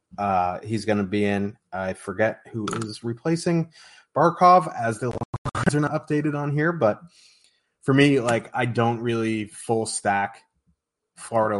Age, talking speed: 30-49, 150 wpm